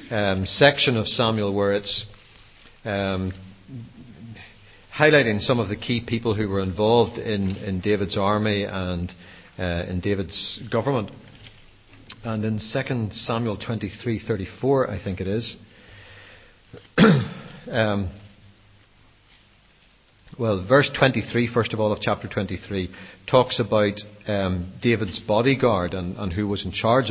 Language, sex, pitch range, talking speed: English, male, 100-120 Hz, 120 wpm